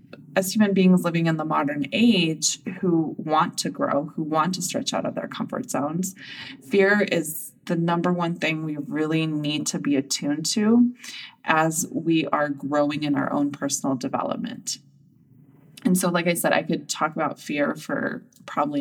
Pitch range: 150-215 Hz